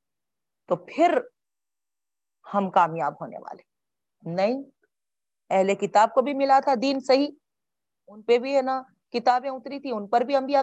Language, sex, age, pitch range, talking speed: Urdu, female, 40-59, 185-270 Hz, 150 wpm